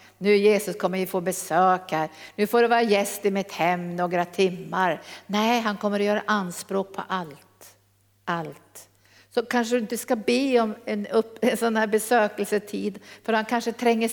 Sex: female